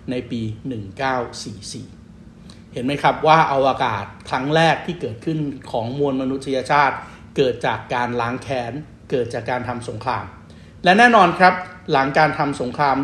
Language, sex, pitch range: Thai, male, 115-145 Hz